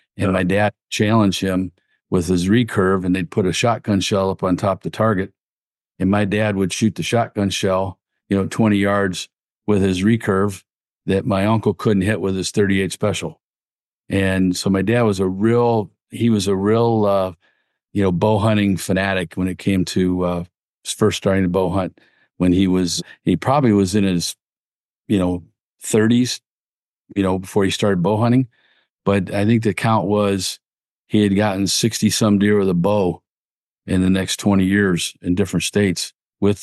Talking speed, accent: 185 wpm, American